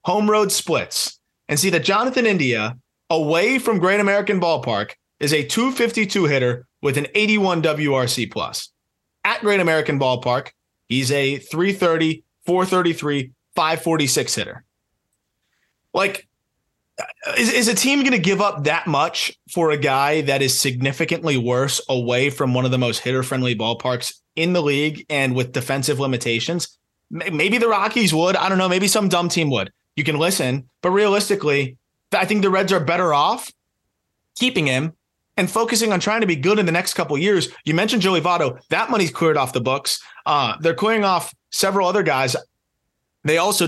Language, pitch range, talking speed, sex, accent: English, 140-195 Hz, 170 wpm, male, American